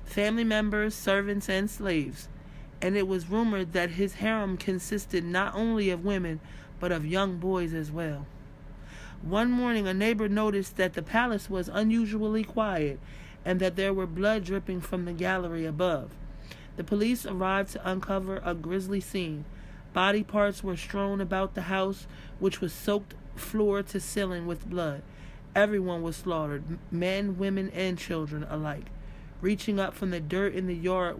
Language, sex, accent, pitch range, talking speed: English, male, American, 170-195 Hz, 160 wpm